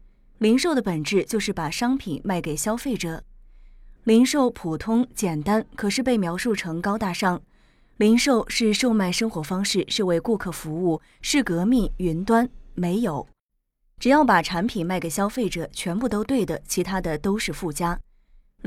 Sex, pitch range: female, 175-235 Hz